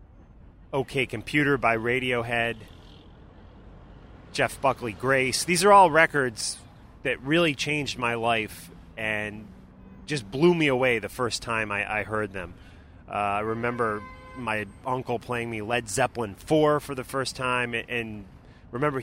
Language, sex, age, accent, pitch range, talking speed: English, male, 30-49, American, 100-130 Hz, 140 wpm